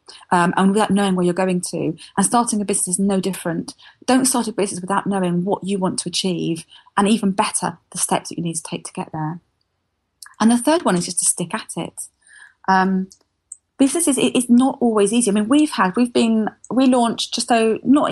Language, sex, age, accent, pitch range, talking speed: English, female, 30-49, British, 185-235 Hz, 215 wpm